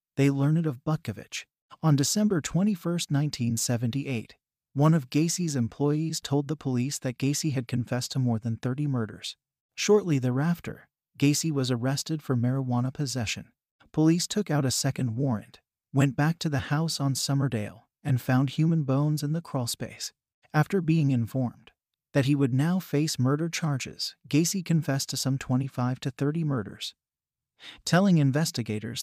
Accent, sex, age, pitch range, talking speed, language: American, male, 40-59, 125-155 Hz, 150 wpm, English